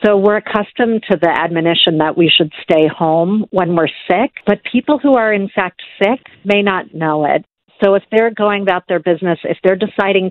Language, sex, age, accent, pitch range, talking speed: English, female, 50-69, American, 165-195 Hz, 205 wpm